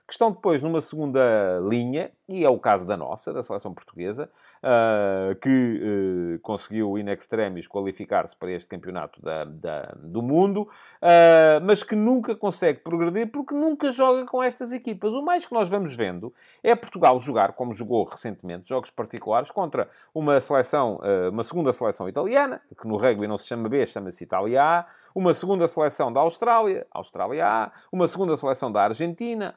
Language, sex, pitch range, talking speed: English, male, 135-215 Hz, 165 wpm